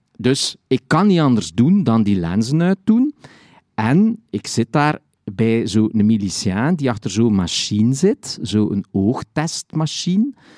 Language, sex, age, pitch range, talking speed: Dutch, male, 50-69, 105-160 Hz, 135 wpm